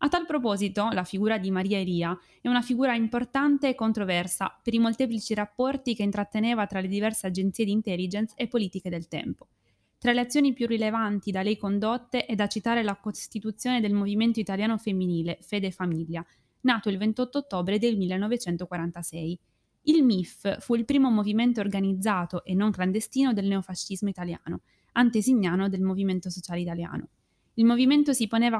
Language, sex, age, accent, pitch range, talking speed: Italian, female, 20-39, native, 190-230 Hz, 165 wpm